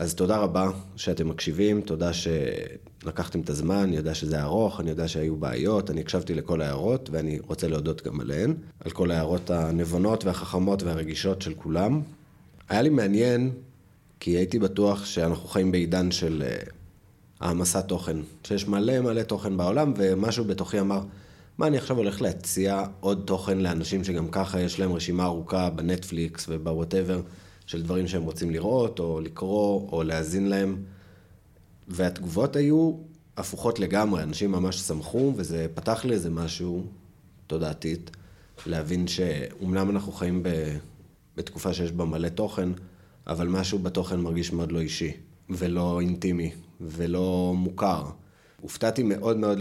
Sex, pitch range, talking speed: male, 85-100 Hz, 140 wpm